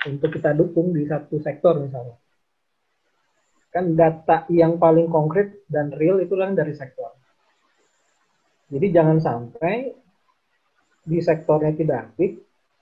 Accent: native